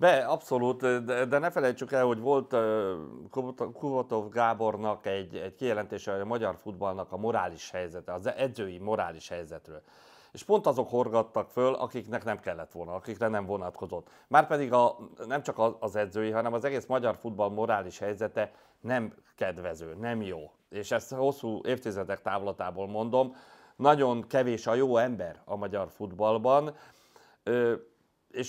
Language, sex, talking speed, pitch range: Hungarian, male, 145 wpm, 100-130 Hz